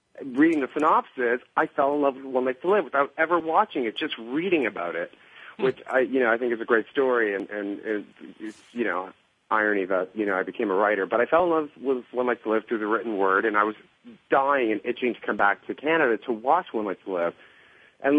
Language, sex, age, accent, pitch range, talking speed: English, male, 40-59, American, 100-130 Hz, 250 wpm